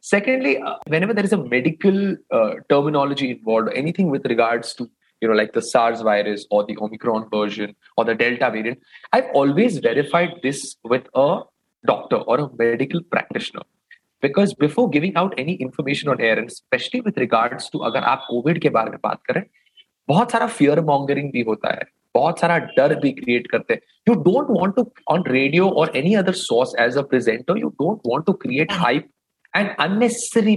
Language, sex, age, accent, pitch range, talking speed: Hindi, male, 30-49, native, 125-200 Hz, 185 wpm